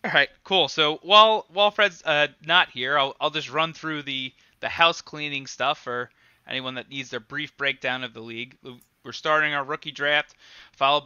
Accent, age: American, 20-39